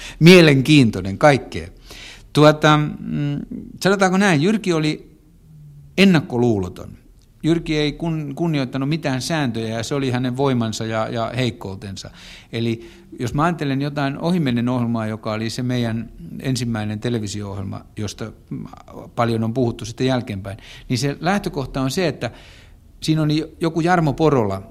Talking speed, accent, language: 125 wpm, native, Finnish